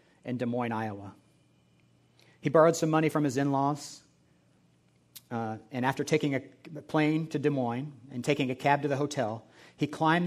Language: English